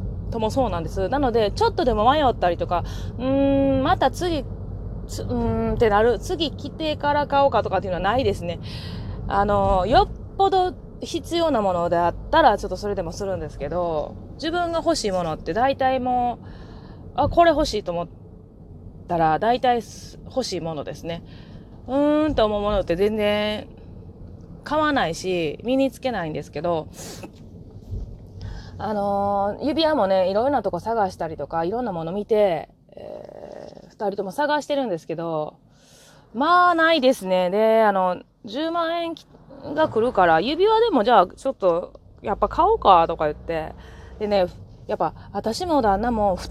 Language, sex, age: Japanese, female, 20-39